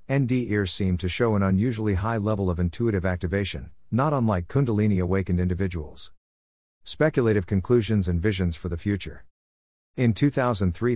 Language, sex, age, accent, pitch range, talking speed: English, male, 50-69, American, 90-115 Hz, 140 wpm